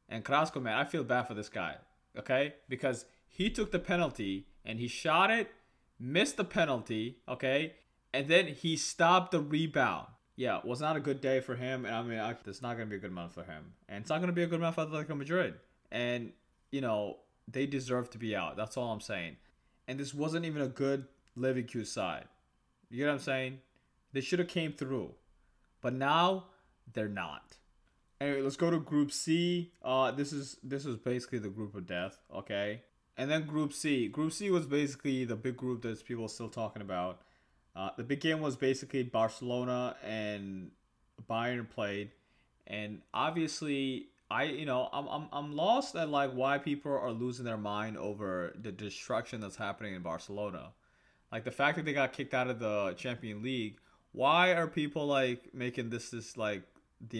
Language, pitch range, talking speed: English, 110-145 Hz, 195 wpm